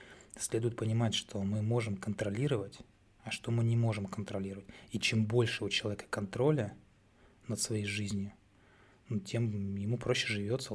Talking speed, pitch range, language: 140 wpm, 105-120 Hz, Russian